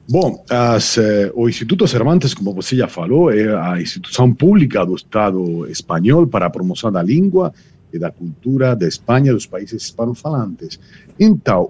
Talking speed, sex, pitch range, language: 160 wpm, male, 105-140 Hz, Portuguese